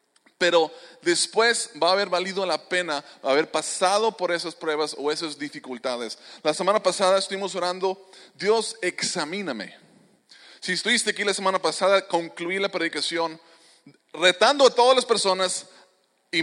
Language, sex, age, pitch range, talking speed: English, male, 20-39, 170-205 Hz, 140 wpm